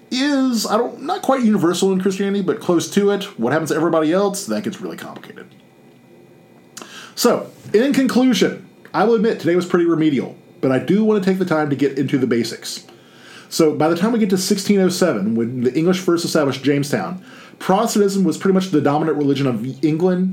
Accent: American